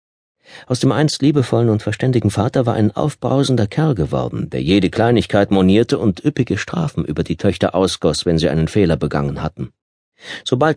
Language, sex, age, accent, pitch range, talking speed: German, male, 50-69, German, 90-115 Hz, 165 wpm